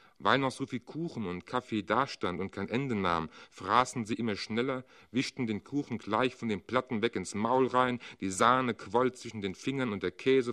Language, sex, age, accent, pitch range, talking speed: German, male, 40-59, German, 105-130 Hz, 205 wpm